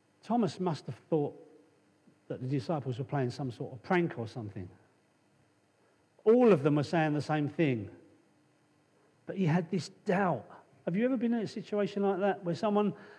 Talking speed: 180 wpm